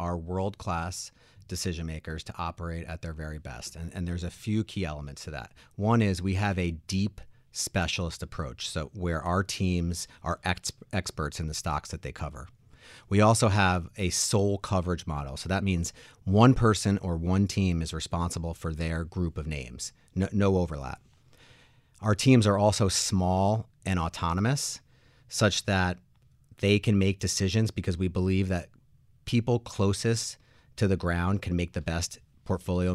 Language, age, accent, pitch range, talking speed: English, 40-59, American, 85-105 Hz, 165 wpm